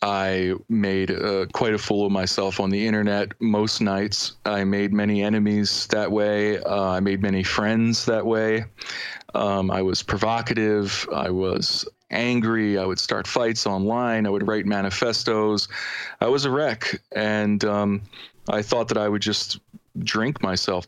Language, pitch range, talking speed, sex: English, 95-110 Hz, 160 wpm, male